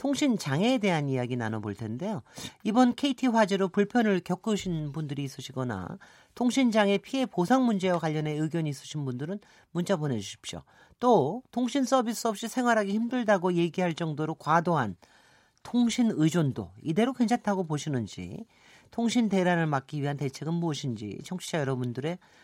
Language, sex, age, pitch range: Korean, male, 40-59, 145-220 Hz